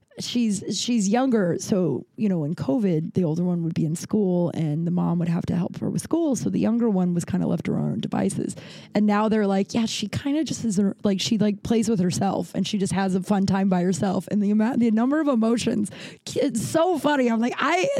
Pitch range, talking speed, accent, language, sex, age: 185-235 Hz, 250 wpm, American, English, female, 20-39